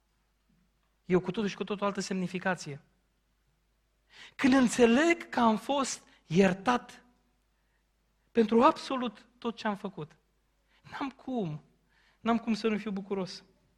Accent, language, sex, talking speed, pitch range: native, Romanian, male, 120 wpm, 190-245 Hz